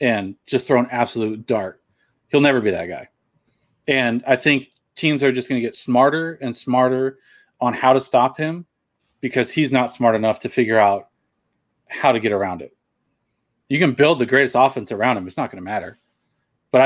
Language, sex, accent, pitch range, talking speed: English, male, American, 120-140 Hz, 195 wpm